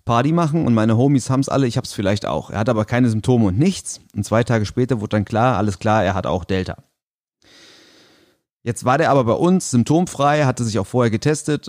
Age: 30-49